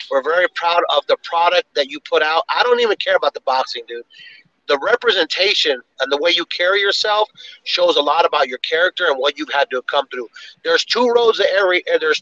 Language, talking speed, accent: English, 225 wpm, American